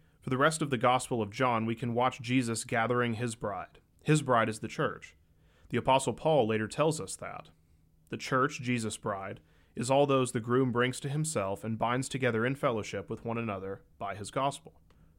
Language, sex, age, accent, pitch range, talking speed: English, male, 30-49, American, 100-125 Hz, 200 wpm